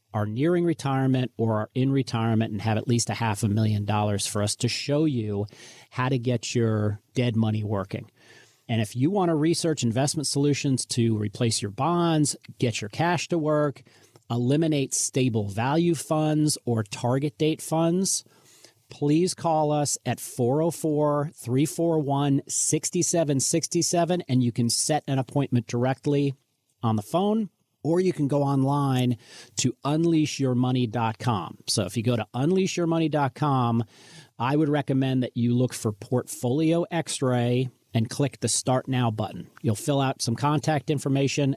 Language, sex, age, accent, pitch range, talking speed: English, male, 40-59, American, 115-150 Hz, 145 wpm